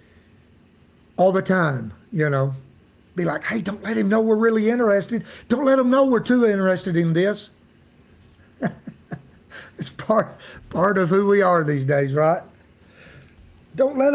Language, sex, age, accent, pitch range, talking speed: English, male, 60-79, American, 140-200 Hz, 155 wpm